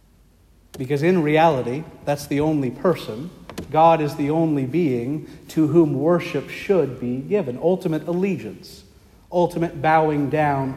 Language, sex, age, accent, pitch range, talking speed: English, male, 50-69, American, 125-155 Hz, 130 wpm